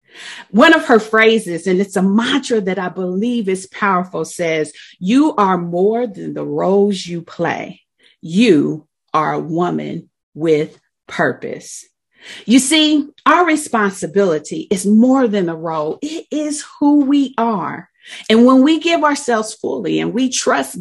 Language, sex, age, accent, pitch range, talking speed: English, female, 40-59, American, 175-235 Hz, 145 wpm